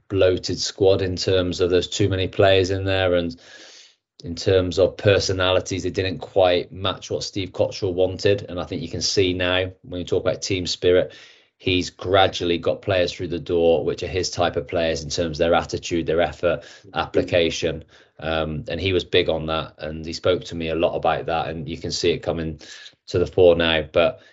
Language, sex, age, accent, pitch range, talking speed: English, male, 20-39, British, 85-95 Hz, 210 wpm